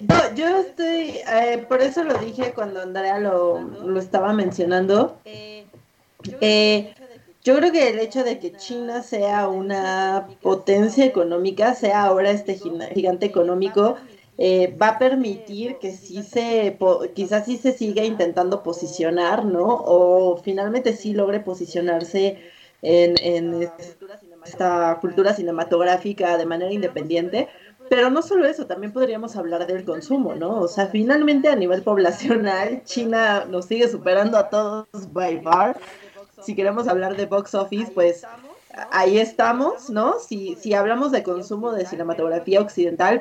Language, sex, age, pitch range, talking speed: Spanish, female, 30-49, 180-230 Hz, 140 wpm